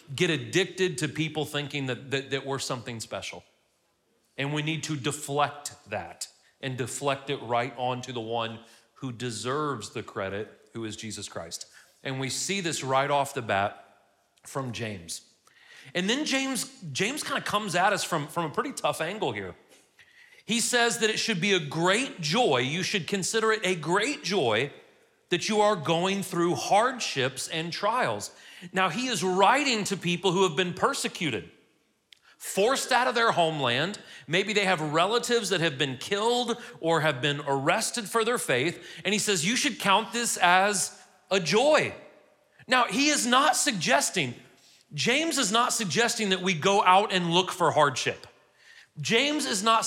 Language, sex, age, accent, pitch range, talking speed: English, male, 40-59, American, 145-215 Hz, 170 wpm